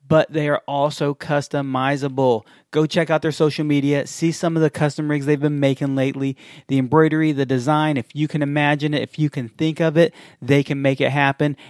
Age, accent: 30-49, American